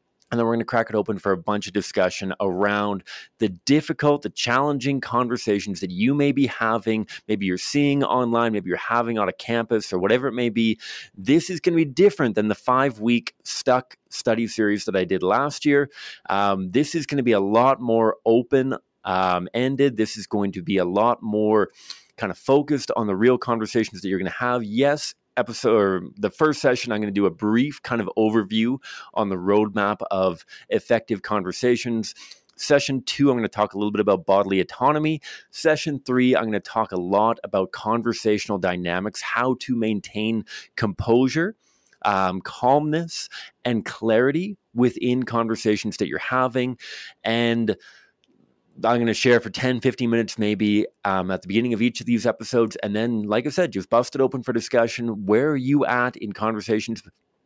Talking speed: 190 wpm